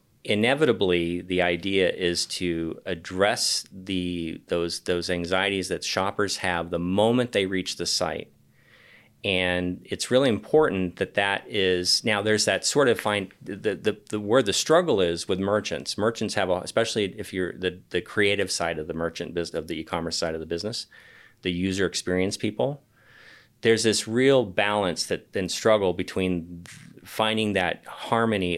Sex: male